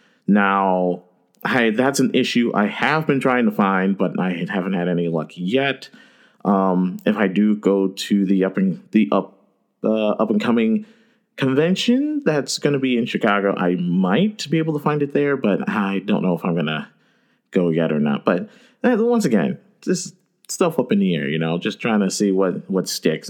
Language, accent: English, American